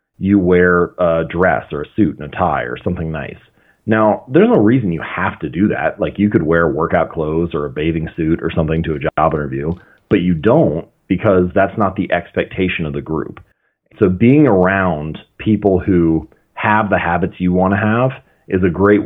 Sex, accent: male, American